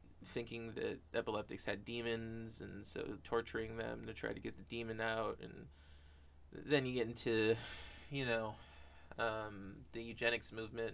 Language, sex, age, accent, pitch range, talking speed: English, male, 20-39, American, 75-115 Hz, 150 wpm